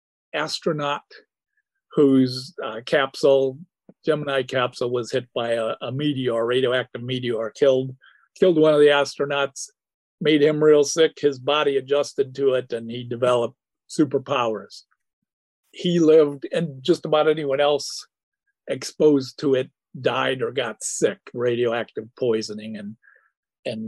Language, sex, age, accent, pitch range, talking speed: English, male, 50-69, American, 120-145 Hz, 130 wpm